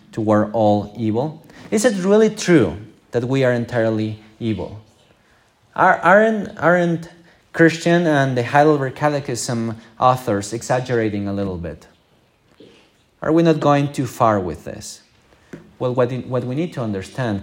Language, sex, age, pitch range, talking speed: English, male, 30-49, 110-155 Hz, 125 wpm